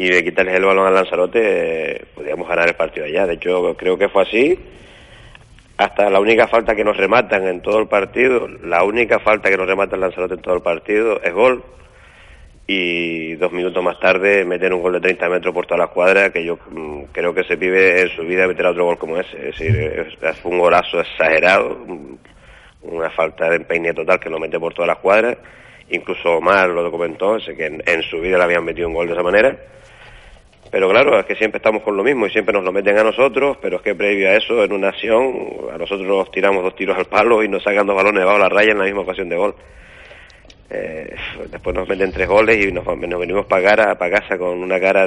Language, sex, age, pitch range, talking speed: Spanish, male, 30-49, 90-130 Hz, 225 wpm